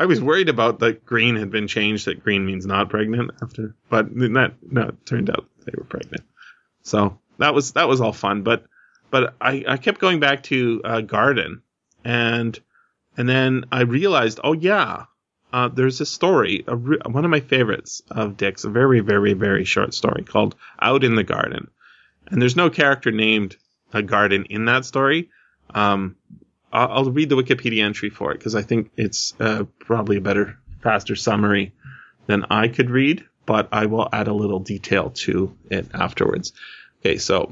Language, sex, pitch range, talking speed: English, male, 105-130 Hz, 185 wpm